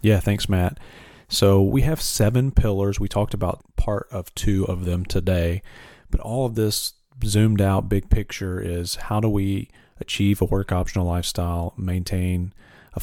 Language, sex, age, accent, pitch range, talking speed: English, male, 40-59, American, 90-100 Hz, 165 wpm